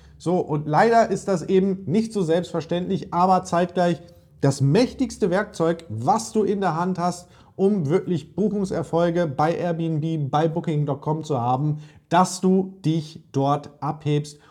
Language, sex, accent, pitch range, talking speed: German, male, German, 150-190 Hz, 140 wpm